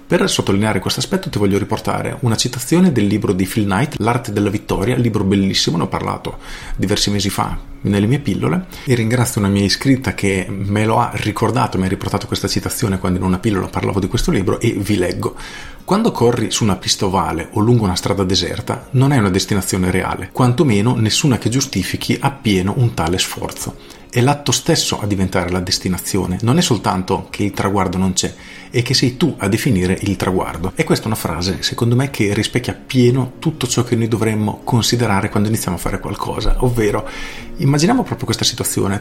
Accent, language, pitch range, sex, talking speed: native, Italian, 100-125 Hz, male, 195 wpm